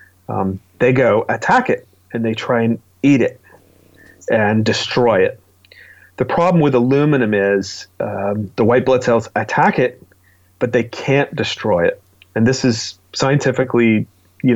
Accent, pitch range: American, 105-135 Hz